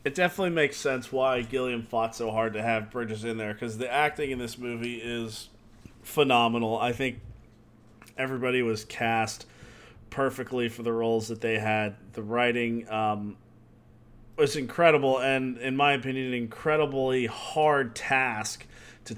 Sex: male